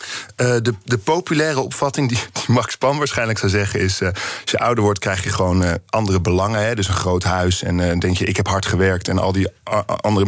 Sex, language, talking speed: male, Dutch, 250 wpm